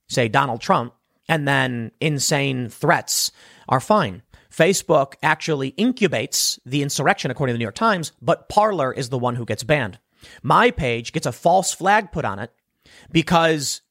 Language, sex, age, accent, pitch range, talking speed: English, male, 30-49, American, 125-170 Hz, 165 wpm